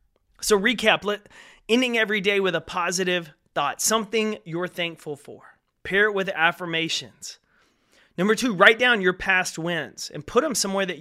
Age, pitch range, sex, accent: 30-49, 150-195 Hz, male, American